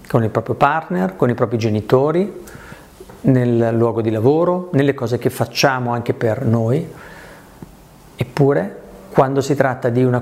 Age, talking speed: 50-69, 145 wpm